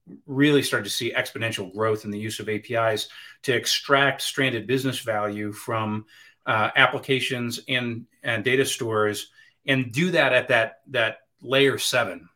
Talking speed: 150 wpm